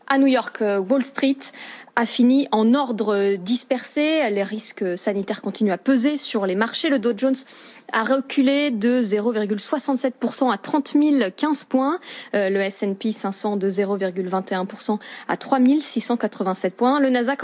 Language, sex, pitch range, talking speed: French, female, 210-275 Hz, 140 wpm